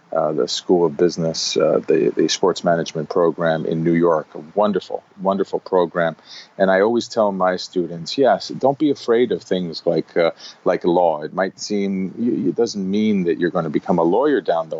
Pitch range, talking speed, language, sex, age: 85-110 Hz, 200 wpm, English, male, 40-59